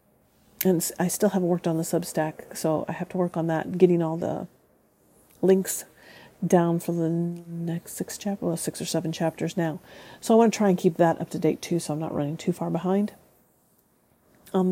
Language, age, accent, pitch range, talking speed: English, 40-59, American, 170-210 Hz, 210 wpm